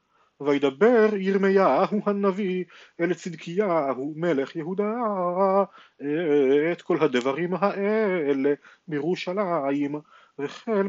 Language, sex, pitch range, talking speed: Hebrew, male, 150-200 Hz, 70 wpm